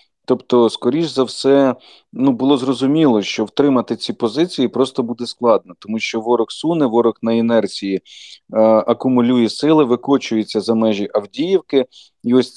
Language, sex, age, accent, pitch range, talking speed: Ukrainian, male, 40-59, native, 115-140 Hz, 145 wpm